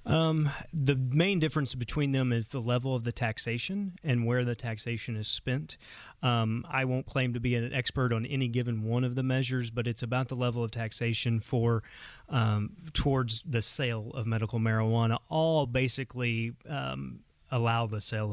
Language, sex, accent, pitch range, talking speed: English, male, American, 110-130 Hz, 175 wpm